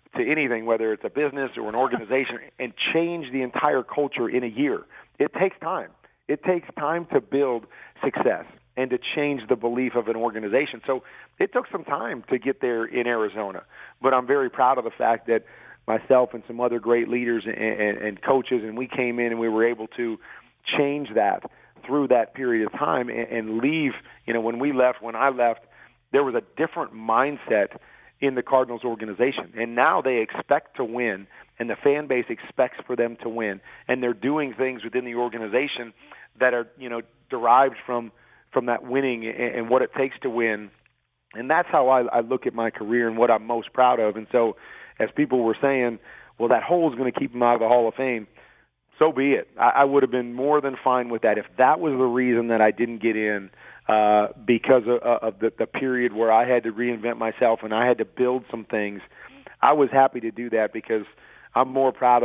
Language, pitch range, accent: English, 115-130 Hz, American